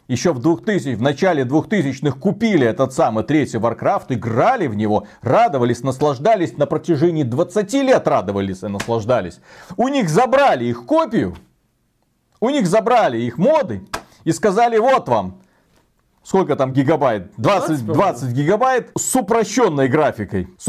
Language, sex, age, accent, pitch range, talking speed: Russian, male, 40-59, native, 115-180 Hz, 135 wpm